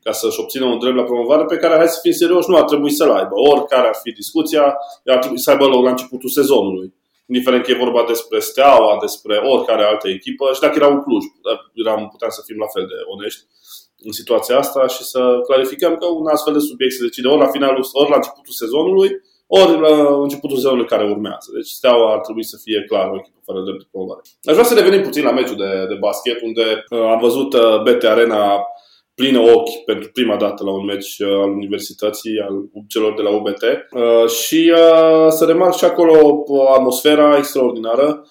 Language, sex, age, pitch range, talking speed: Romanian, male, 20-39, 105-150 Hz, 205 wpm